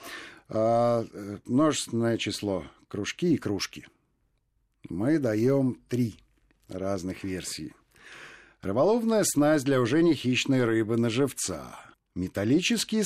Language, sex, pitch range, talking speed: Russian, male, 105-145 Hz, 90 wpm